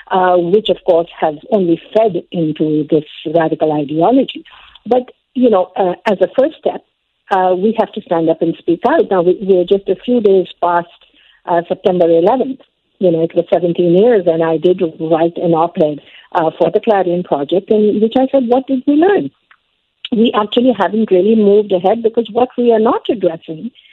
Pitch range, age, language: 170-215 Hz, 50-69, English